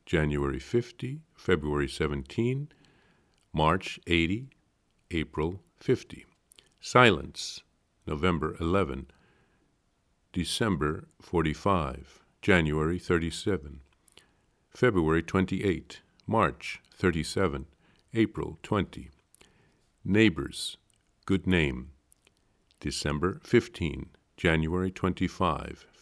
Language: English